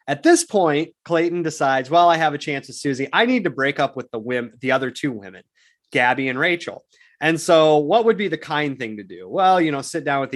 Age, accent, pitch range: 30-49, American, 125-155 Hz